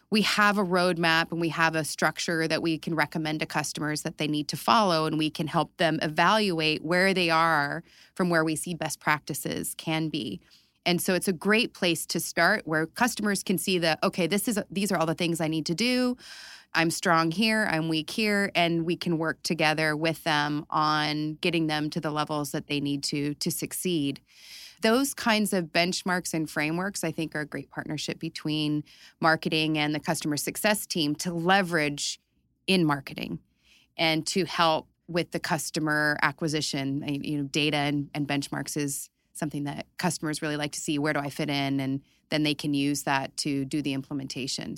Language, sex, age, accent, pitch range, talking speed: English, female, 30-49, American, 150-180 Hz, 195 wpm